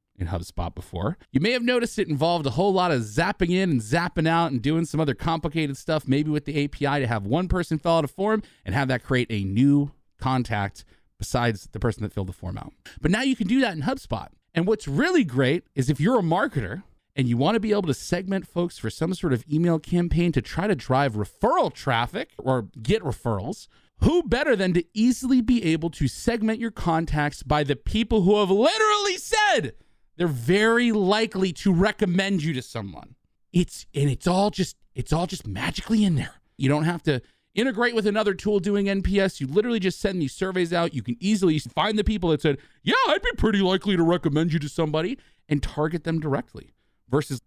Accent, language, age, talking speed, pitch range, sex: American, English, 30-49, 210 wpm, 135-200 Hz, male